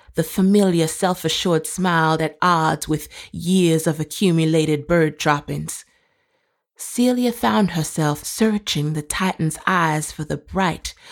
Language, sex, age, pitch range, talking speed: English, female, 30-49, 155-225 Hz, 120 wpm